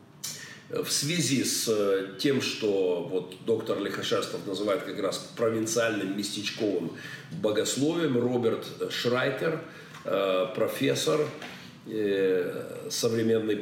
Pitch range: 105-140 Hz